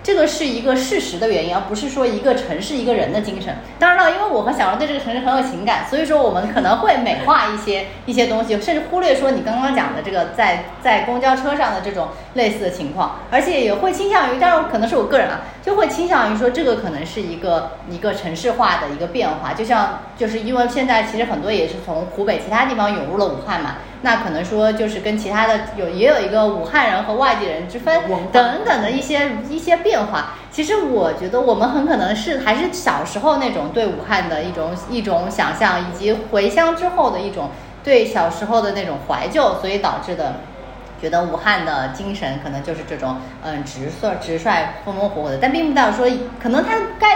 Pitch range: 200-275 Hz